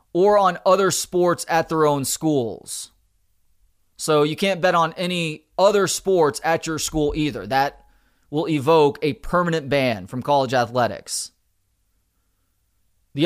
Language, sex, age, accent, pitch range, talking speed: English, male, 30-49, American, 140-180 Hz, 135 wpm